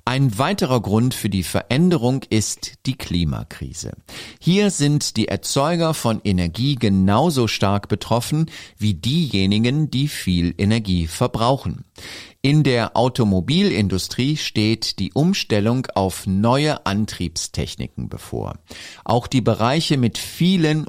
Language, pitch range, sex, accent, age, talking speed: German, 95-135 Hz, male, German, 50-69, 110 wpm